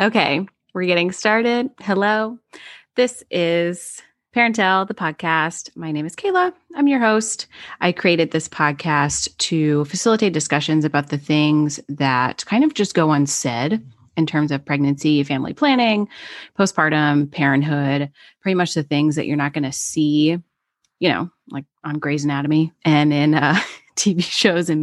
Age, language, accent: 30-49, English, American